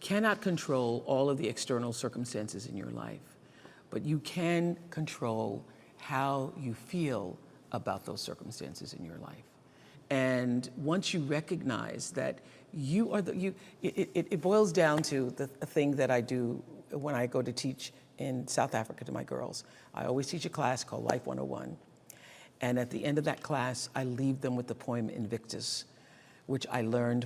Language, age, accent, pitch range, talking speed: English, 50-69, American, 120-150 Hz, 170 wpm